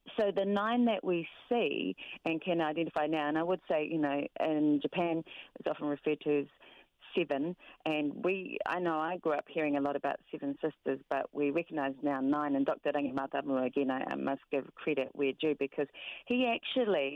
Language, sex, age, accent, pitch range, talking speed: English, female, 40-59, Australian, 145-185 Hz, 190 wpm